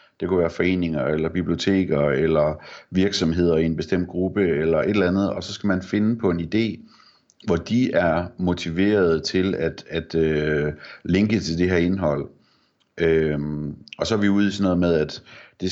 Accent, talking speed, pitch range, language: native, 185 wpm, 80-100 Hz, Danish